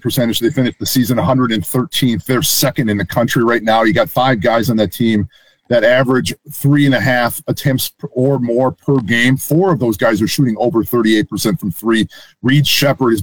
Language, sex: English, male